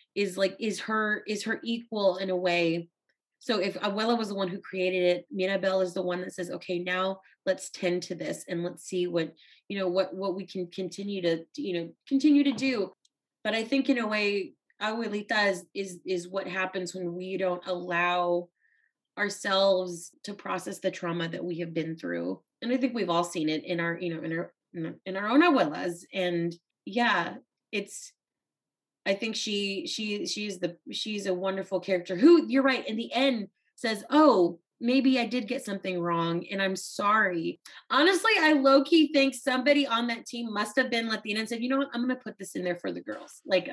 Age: 20-39